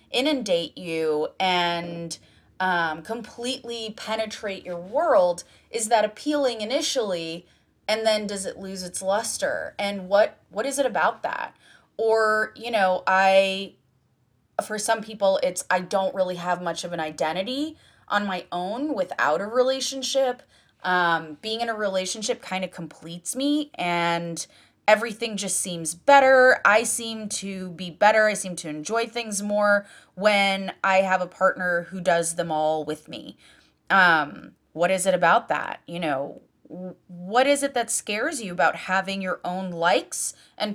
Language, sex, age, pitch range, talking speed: English, female, 20-39, 175-225 Hz, 155 wpm